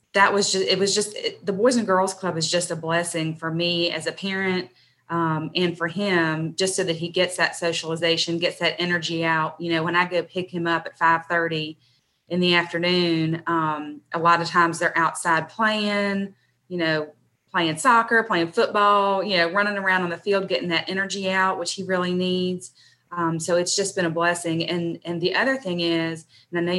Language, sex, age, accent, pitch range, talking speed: English, female, 30-49, American, 160-180 Hz, 210 wpm